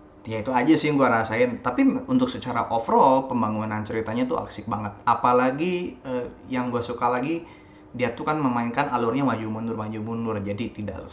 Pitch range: 110-130 Hz